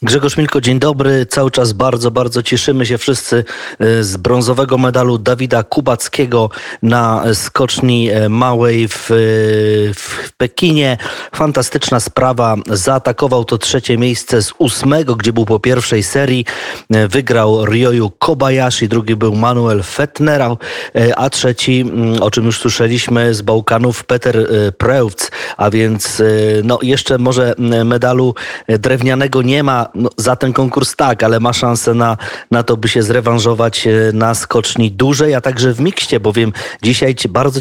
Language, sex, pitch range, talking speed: Polish, male, 115-130 Hz, 135 wpm